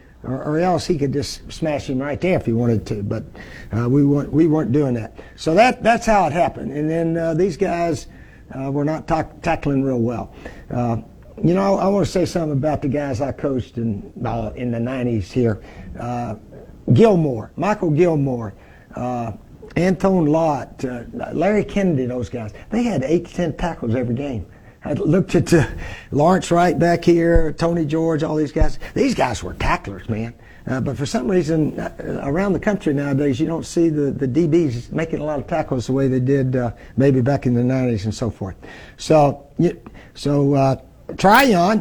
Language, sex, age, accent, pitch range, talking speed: English, male, 60-79, American, 125-175 Hz, 190 wpm